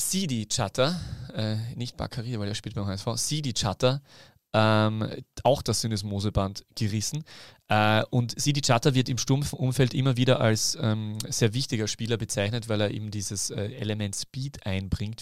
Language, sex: German, male